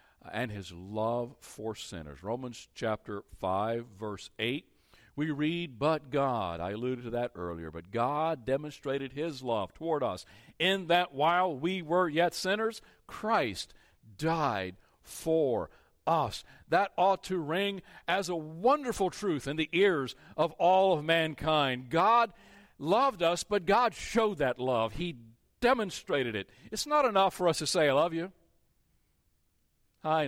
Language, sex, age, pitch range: English, male, 60-79, 120-180 Hz